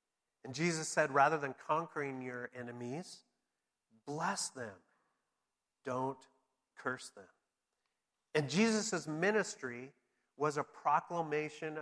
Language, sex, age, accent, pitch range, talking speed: English, male, 50-69, American, 125-145 Hz, 95 wpm